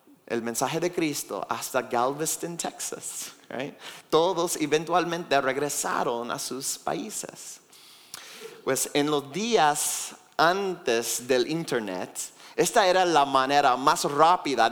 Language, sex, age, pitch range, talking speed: Spanish, male, 30-49, 130-175 Hz, 105 wpm